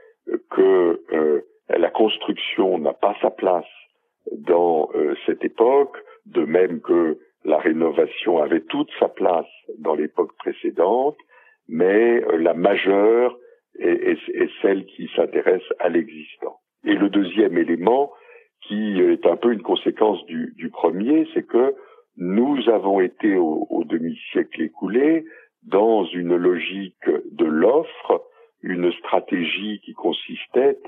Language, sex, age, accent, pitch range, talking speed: French, male, 60-79, French, 310-435 Hz, 130 wpm